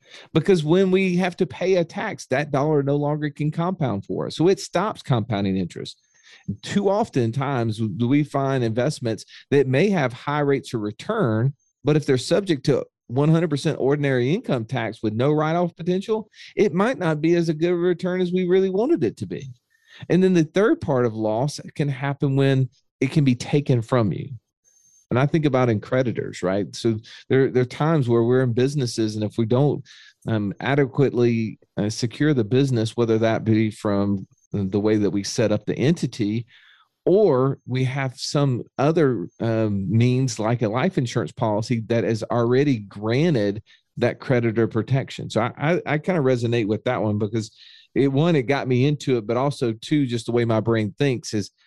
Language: English